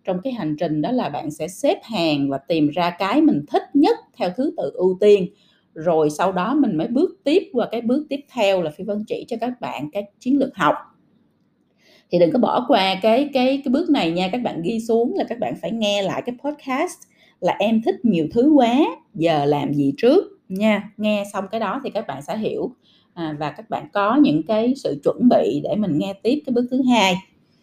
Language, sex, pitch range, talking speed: Vietnamese, female, 190-280 Hz, 230 wpm